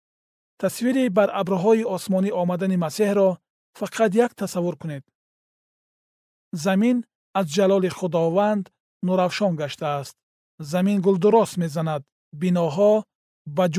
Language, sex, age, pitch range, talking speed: Persian, male, 40-59, 170-200 Hz, 105 wpm